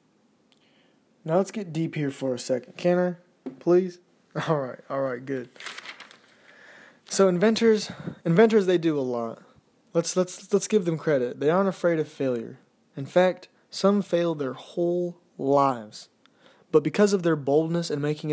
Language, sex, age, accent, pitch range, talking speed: English, male, 20-39, American, 140-175 Hz, 150 wpm